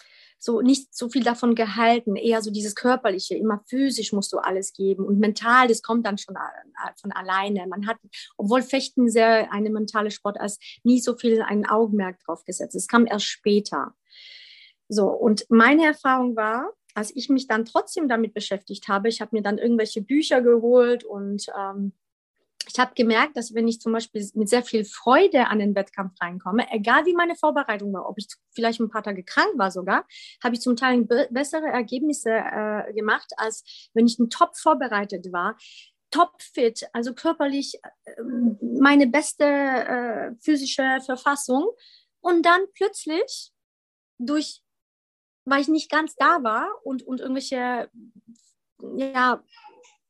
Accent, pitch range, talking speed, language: German, 215-275 Hz, 160 wpm, German